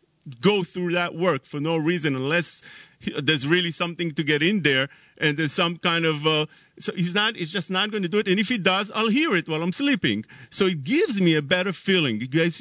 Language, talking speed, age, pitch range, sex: English, 240 wpm, 40-59, 150-215 Hz, male